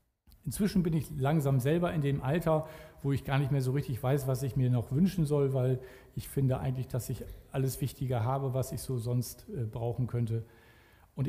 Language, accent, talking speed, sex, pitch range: German, German, 200 wpm, male, 125-165 Hz